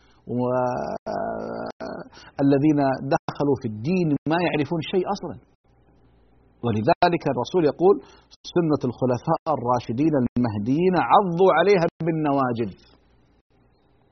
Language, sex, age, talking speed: Arabic, male, 50-69, 75 wpm